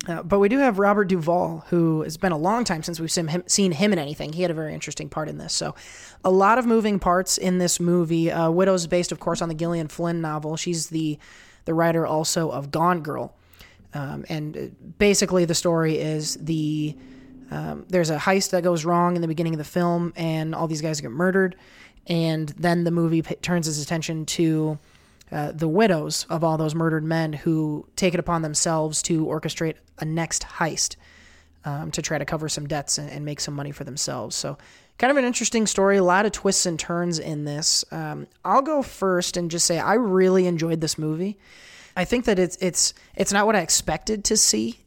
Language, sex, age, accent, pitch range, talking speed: English, male, 20-39, American, 155-180 Hz, 215 wpm